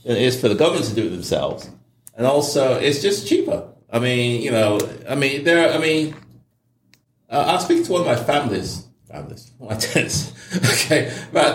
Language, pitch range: English, 110-150 Hz